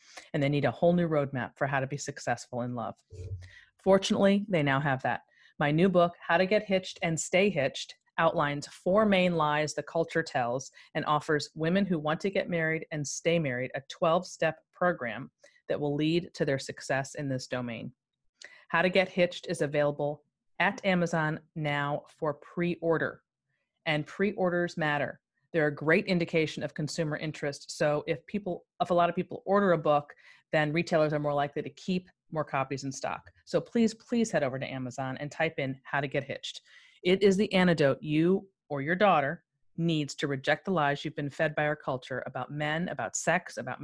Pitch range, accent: 140-175 Hz, American